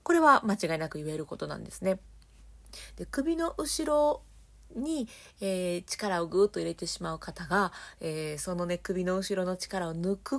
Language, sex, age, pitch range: Japanese, female, 30-49, 180-280 Hz